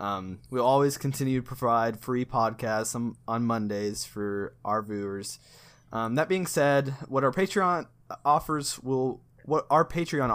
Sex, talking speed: male, 150 wpm